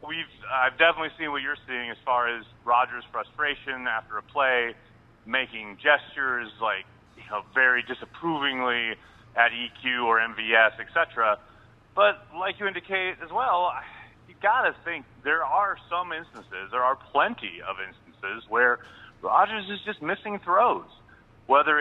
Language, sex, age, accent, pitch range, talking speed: English, male, 30-49, American, 115-155 Hz, 145 wpm